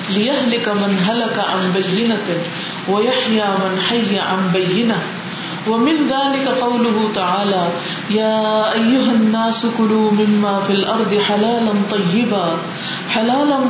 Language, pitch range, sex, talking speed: Urdu, 190-225 Hz, female, 125 wpm